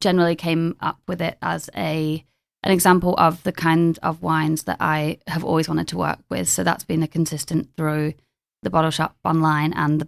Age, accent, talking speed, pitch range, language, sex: 20-39, British, 200 wpm, 150-165 Hz, English, female